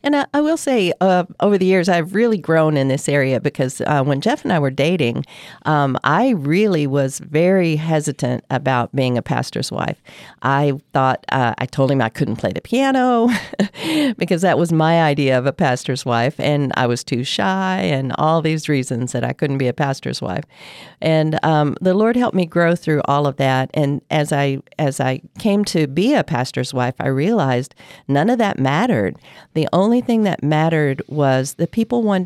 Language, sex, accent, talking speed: English, female, American, 200 wpm